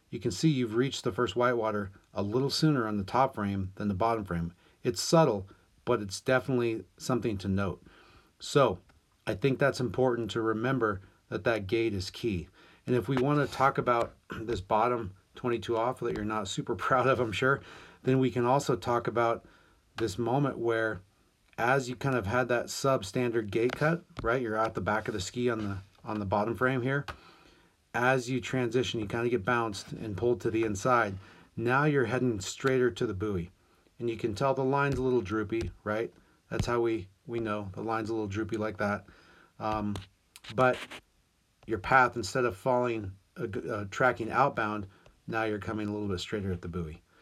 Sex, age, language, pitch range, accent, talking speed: male, 30-49, English, 105-125 Hz, American, 195 wpm